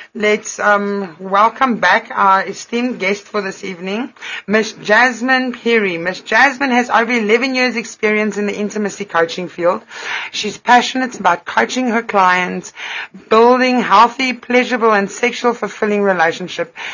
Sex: female